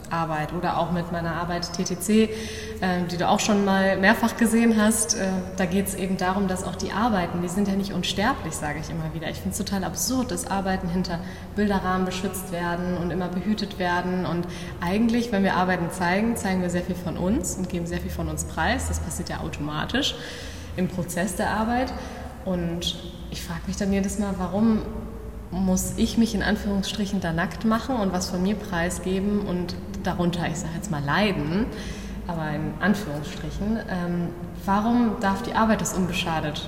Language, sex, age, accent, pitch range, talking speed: German, female, 20-39, German, 175-205 Hz, 185 wpm